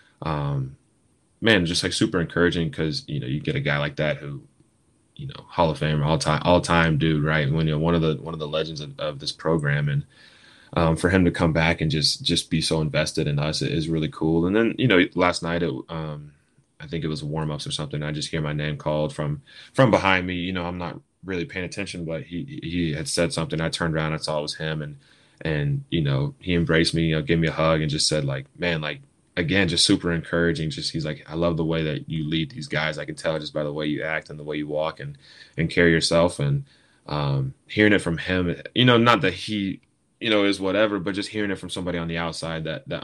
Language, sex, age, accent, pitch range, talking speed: English, male, 20-39, American, 75-90 Hz, 260 wpm